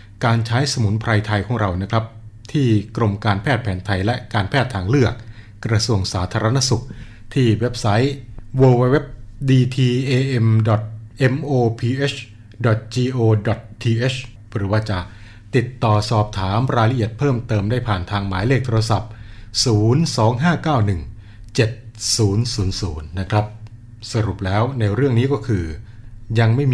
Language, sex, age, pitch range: Thai, male, 20-39, 105-120 Hz